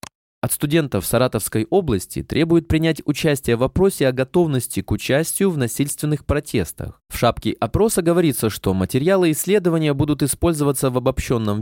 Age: 20-39